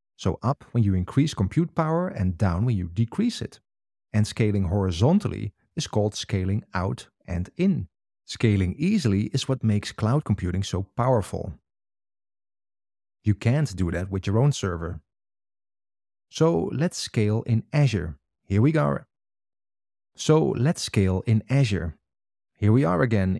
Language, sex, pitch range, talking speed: English, male, 95-125 Hz, 145 wpm